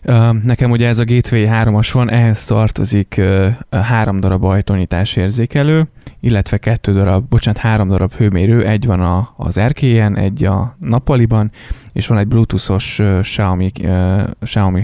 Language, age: Hungarian, 20-39